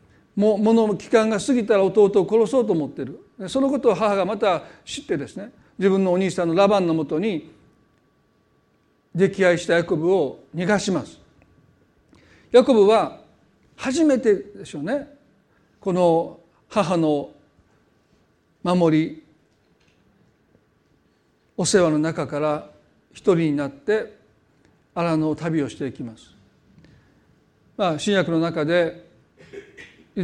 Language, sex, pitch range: Japanese, male, 170-220 Hz